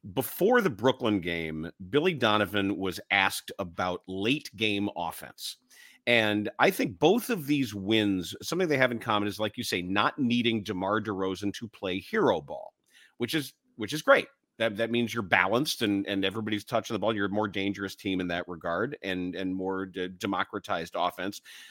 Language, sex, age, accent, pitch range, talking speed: English, male, 40-59, American, 105-145 Hz, 180 wpm